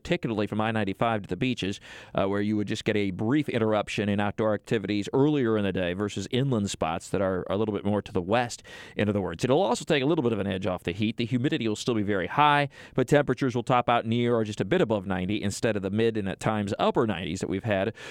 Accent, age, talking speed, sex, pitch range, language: American, 40-59, 265 wpm, male, 105-130 Hz, English